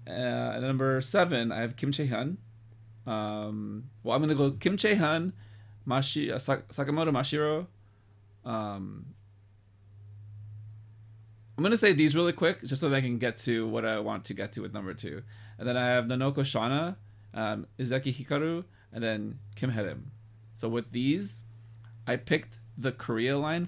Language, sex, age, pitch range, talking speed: English, male, 20-39, 105-135 Hz, 165 wpm